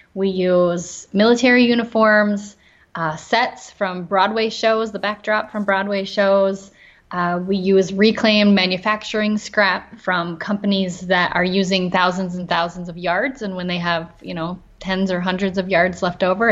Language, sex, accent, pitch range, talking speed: English, female, American, 185-215 Hz, 155 wpm